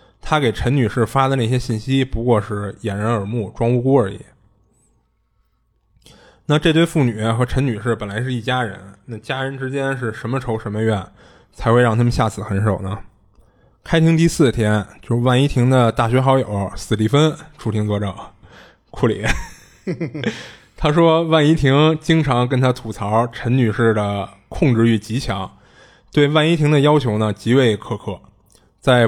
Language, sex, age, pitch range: Chinese, male, 20-39, 110-135 Hz